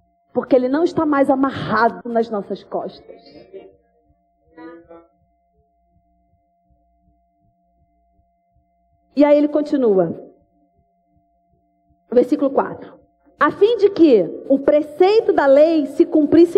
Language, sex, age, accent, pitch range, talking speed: Portuguese, female, 40-59, Brazilian, 270-370 Hz, 90 wpm